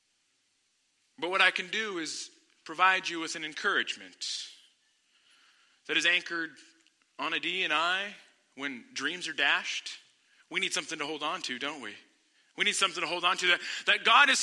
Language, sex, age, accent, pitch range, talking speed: English, male, 40-59, American, 195-270 Hz, 180 wpm